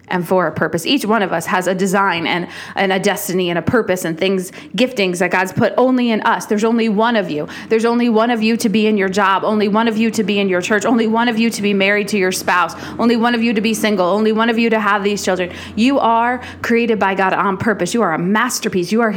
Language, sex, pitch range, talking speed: English, female, 190-230 Hz, 280 wpm